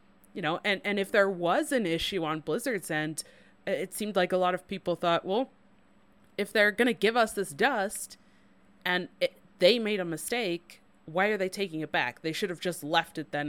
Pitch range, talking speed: 155-200 Hz, 210 wpm